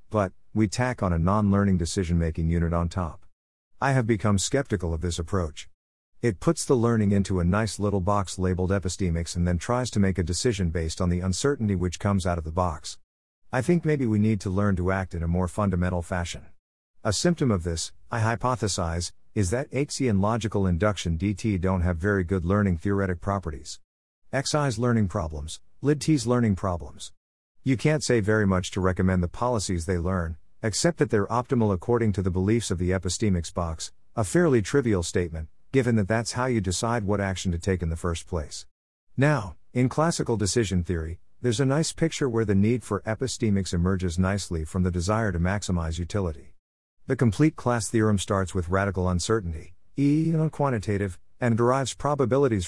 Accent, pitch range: American, 90-115 Hz